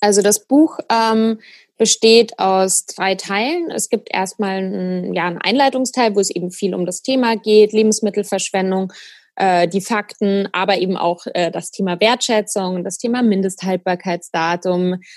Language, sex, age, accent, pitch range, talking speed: German, female, 20-39, German, 190-225 Hz, 145 wpm